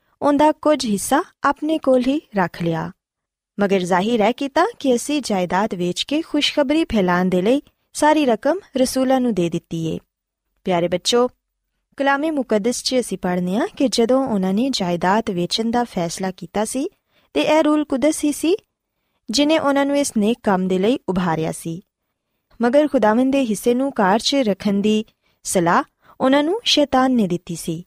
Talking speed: 140 wpm